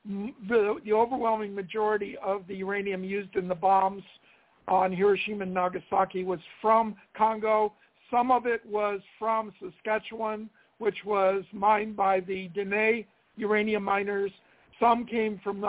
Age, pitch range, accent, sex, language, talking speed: 60-79, 195-230 Hz, American, male, English, 135 wpm